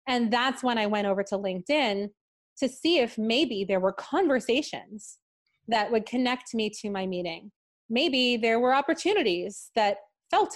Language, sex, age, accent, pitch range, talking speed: English, female, 30-49, American, 210-275 Hz, 160 wpm